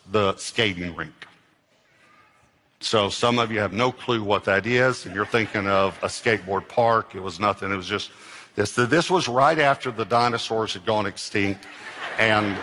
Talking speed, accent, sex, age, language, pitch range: 175 wpm, American, male, 50-69, English, 105-125 Hz